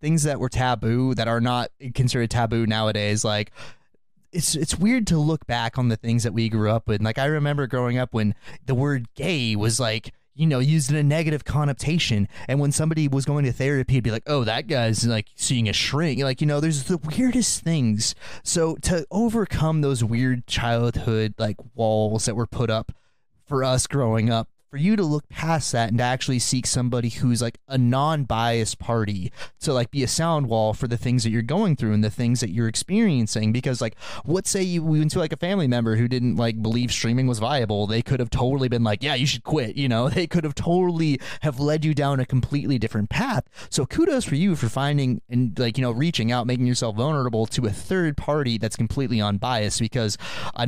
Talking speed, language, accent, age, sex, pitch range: 220 wpm, English, American, 20-39, male, 115-150 Hz